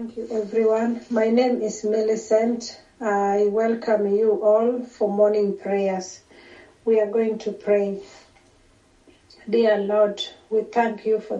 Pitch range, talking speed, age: 195-215 Hz, 130 wpm, 40-59